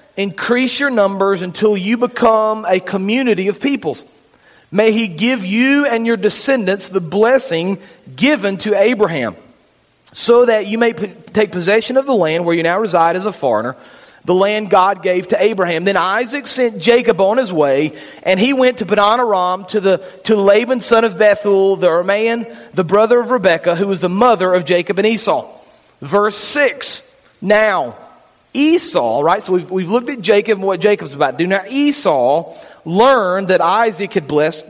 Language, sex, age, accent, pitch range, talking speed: English, male, 40-59, American, 185-235 Hz, 170 wpm